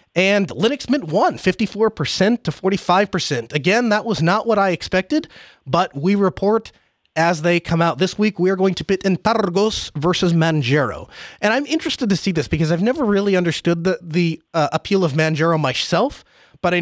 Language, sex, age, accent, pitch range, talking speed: English, male, 30-49, American, 155-195 Hz, 180 wpm